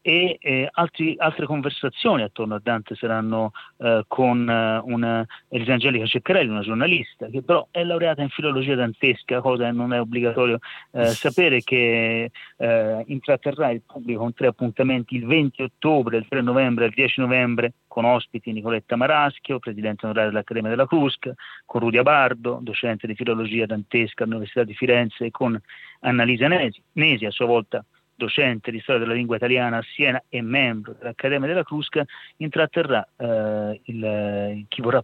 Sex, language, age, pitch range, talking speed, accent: male, Italian, 40-59, 115-135 Hz, 160 wpm, native